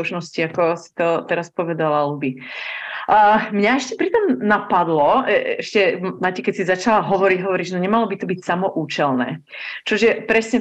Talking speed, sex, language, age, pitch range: 165 wpm, female, Slovak, 30-49, 175-210 Hz